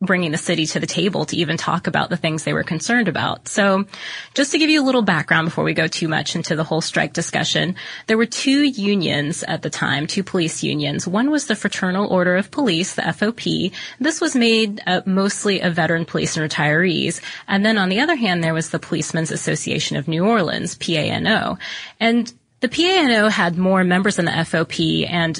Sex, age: female, 20-39